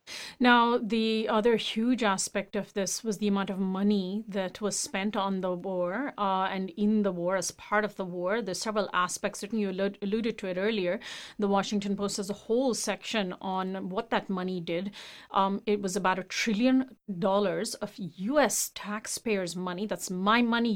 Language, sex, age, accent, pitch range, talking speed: English, female, 30-49, Indian, 195-245 Hz, 180 wpm